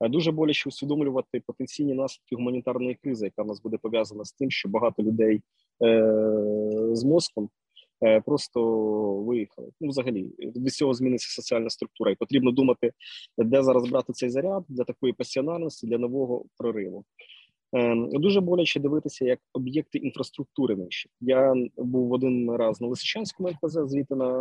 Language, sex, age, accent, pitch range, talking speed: Ukrainian, male, 20-39, native, 120-145 Hz, 150 wpm